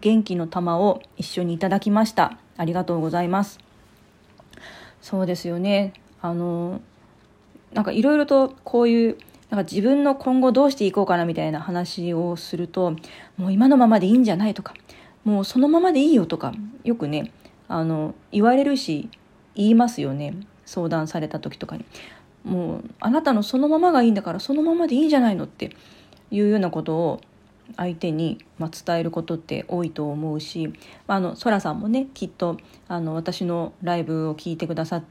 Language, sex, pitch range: Japanese, female, 170-220 Hz